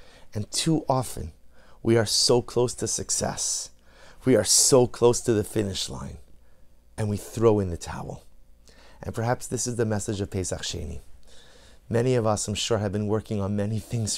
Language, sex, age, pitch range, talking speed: English, male, 30-49, 90-120 Hz, 180 wpm